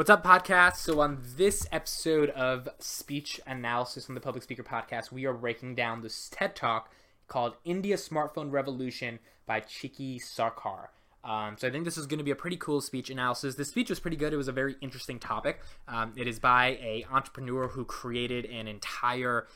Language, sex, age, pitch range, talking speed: English, male, 20-39, 110-135 Hz, 195 wpm